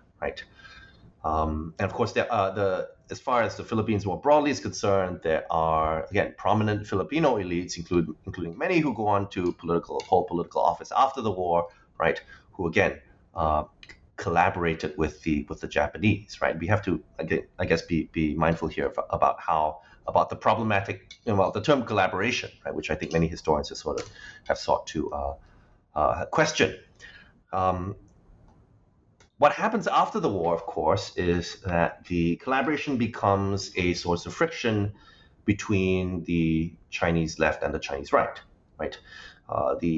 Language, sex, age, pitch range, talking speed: English, male, 30-49, 80-105 Hz, 165 wpm